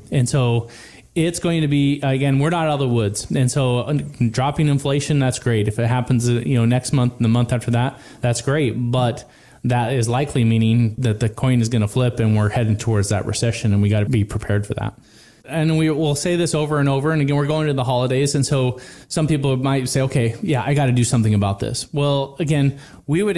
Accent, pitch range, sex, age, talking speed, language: American, 120-145 Hz, male, 20-39, 240 wpm, English